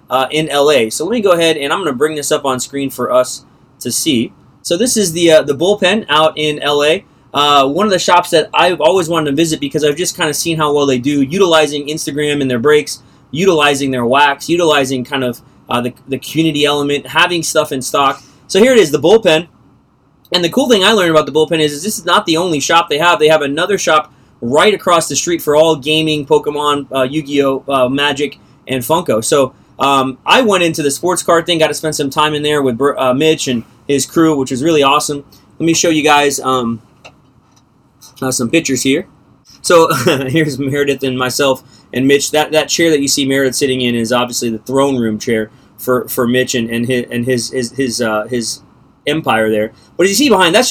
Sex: male